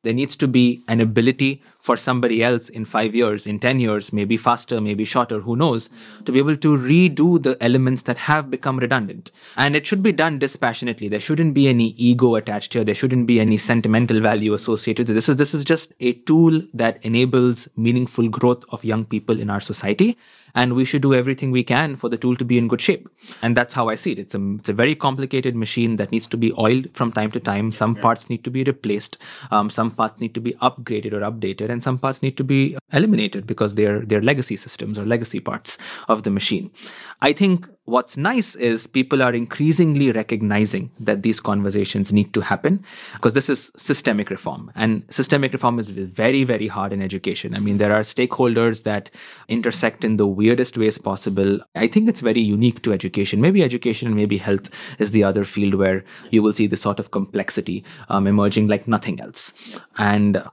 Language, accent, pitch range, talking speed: English, Indian, 105-130 Hz, 210 wpm